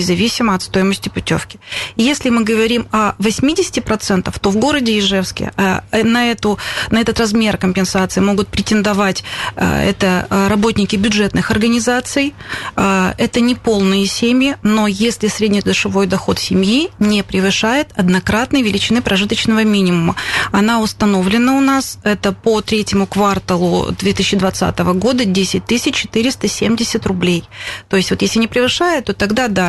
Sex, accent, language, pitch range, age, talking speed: female, native, Russian, 190-225 Hz, 30-49, 125 wpm